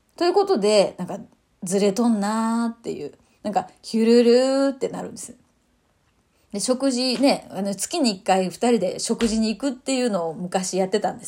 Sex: female